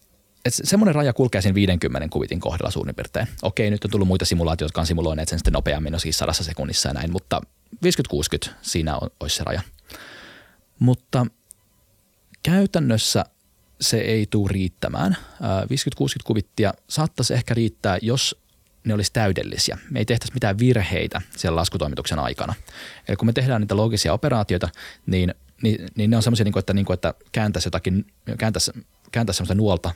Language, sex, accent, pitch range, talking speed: Finnish, male, native, 90-115 Hz, 160 wpm